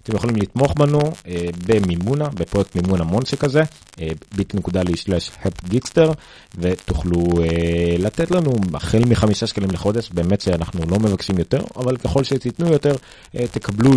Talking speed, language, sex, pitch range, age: 120 wpm, Hebrew, male, 85-115 Hz, 30-49